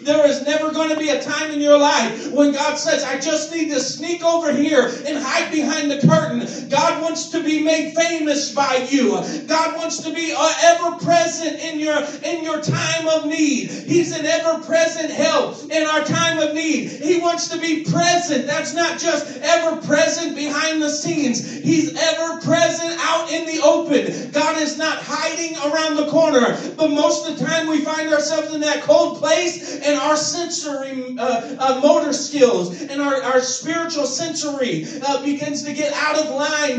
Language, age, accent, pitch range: English, 40-59, American, 285-315 Hz